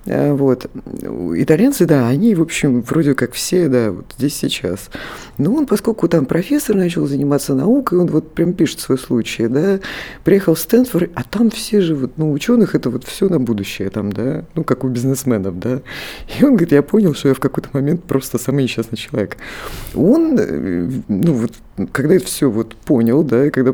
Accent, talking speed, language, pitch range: native, 185 wpm, Russian, 120-165 Hz